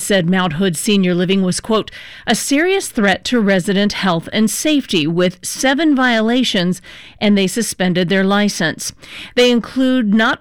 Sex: female